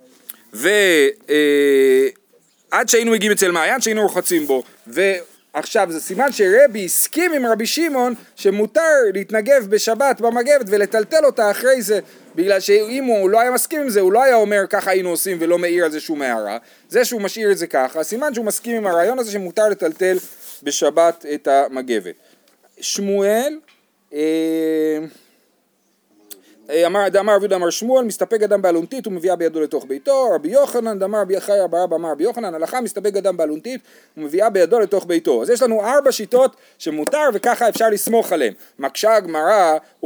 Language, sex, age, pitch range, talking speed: Hebrew, male, 30-49, 170-235 Hz, 155 wpm